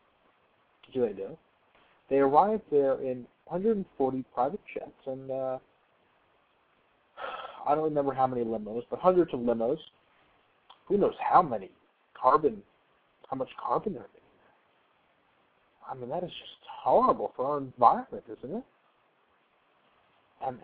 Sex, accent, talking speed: male, American, 135 wpm